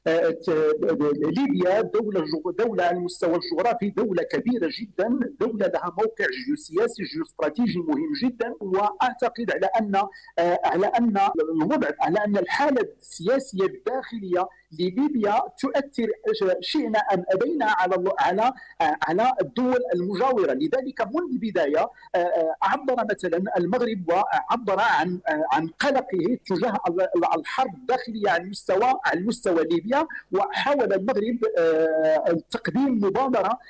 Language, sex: English, male